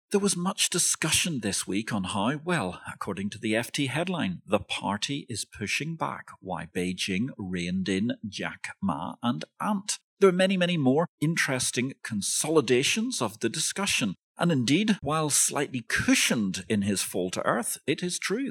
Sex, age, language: male, 40-59, English